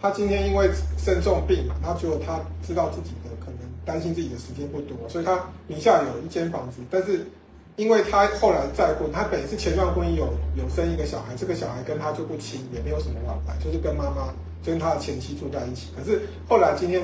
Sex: male